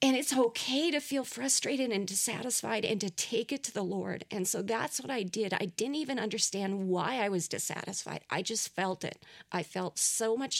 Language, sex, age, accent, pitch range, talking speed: English, female, 40-59, American, 190-245 Hz, 210 wpm